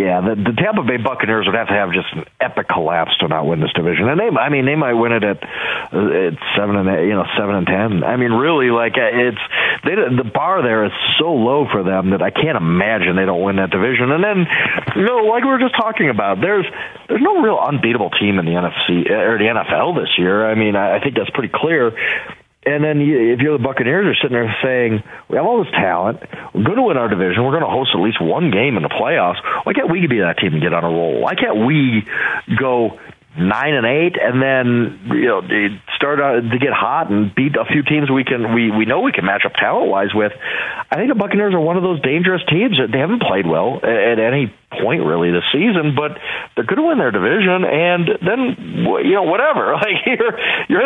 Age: 40-59